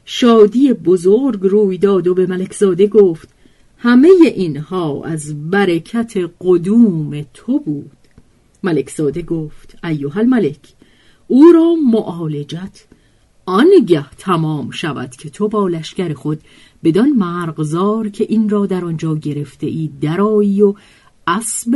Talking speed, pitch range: 120 wpm, 155-235 Hz